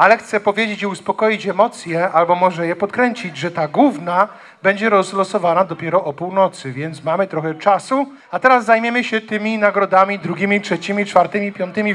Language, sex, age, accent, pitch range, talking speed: Polish, male, 40-59, native, 195-250 Hz, 160 wpm